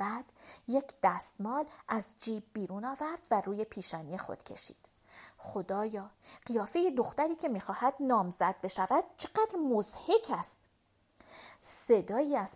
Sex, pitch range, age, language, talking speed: female, 210-290 Hz, 40-59, Persian, 115 wpm